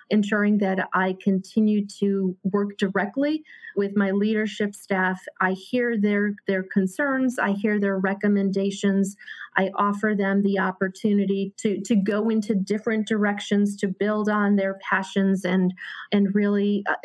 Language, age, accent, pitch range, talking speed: English, 30-49, American, 190-215 Hz, 135 wpm